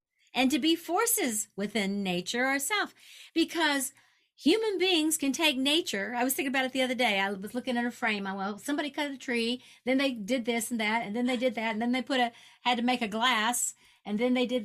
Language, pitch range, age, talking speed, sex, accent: English, 230-280 Hz, 50-69, 240 wpm, female, American